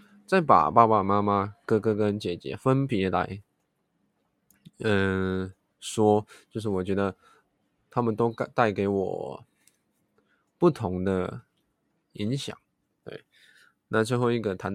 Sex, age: male, 20-39